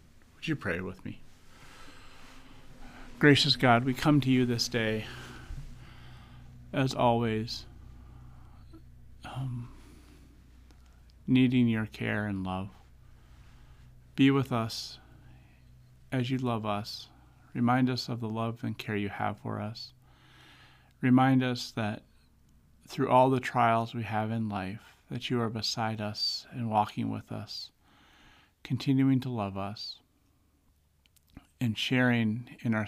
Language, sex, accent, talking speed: English, male, American, 120 wpm